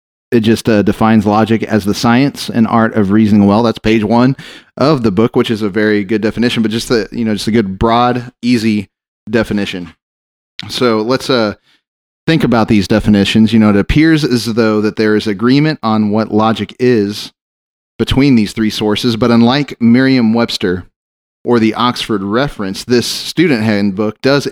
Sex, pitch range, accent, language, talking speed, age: male, 100-120 Hz, American, English, 175 wpm, 30-49